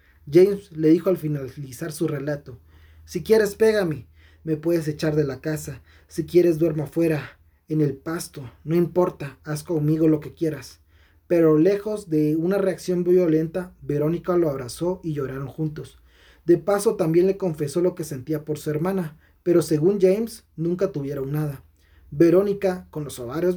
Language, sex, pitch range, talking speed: Spanish, male, 145-175 Hz, 160 wpm